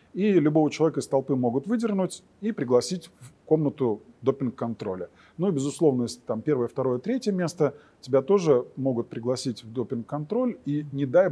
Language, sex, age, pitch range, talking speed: Russian, male, 20-39, 120-150 Hz, 160 wpm